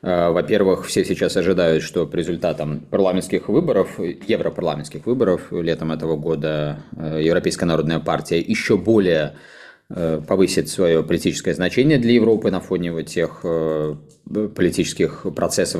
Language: Russian